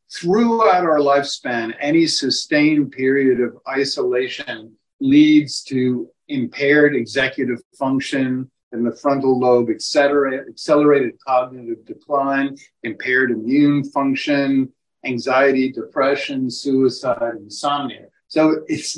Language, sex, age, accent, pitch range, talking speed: English, male, 50-69, American, 120-145 Hz, 100 wpm